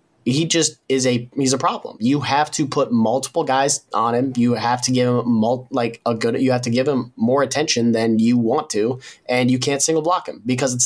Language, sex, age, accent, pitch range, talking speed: English, male, 30-49, American, 115-135 Hz, 240 wpm